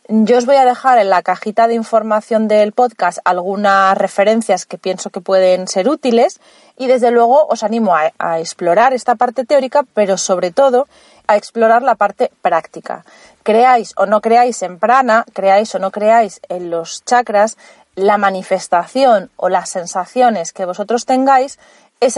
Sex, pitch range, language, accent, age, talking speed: female, 185-235 Hz, Spanish, Spanish, 30-49, 165 wpm